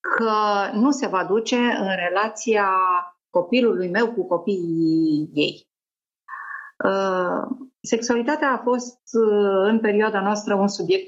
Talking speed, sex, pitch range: 120 wpm, female, 180-235 Hz